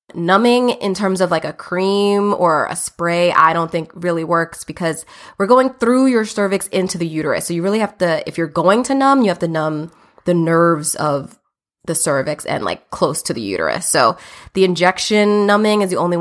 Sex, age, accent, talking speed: female, 20-39, American, 205 wpm